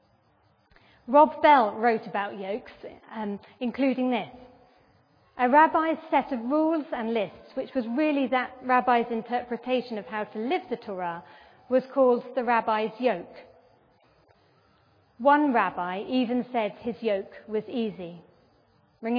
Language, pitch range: English, 215-260 Hz